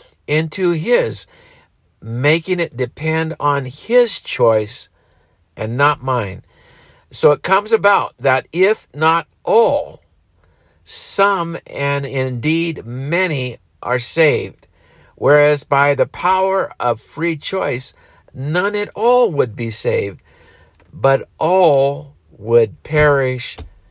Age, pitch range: 50-69, 110-150 Hz